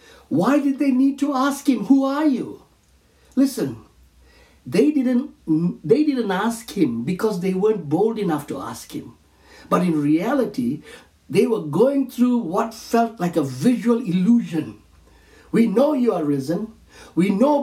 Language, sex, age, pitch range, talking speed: English, male, 60-79, 150-245 Hz, 155 wpm